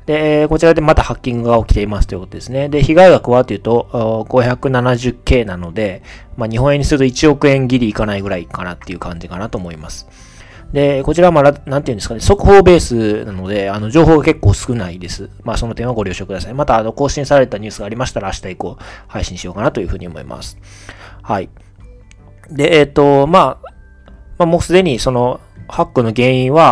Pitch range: 95-130 Hz